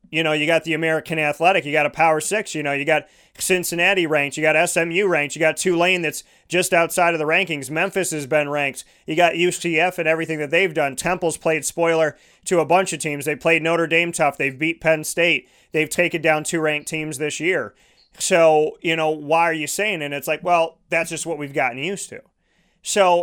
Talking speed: 225 wpm